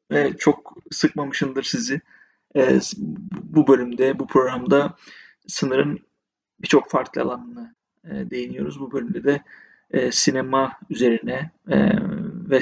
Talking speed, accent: 85 wpm, native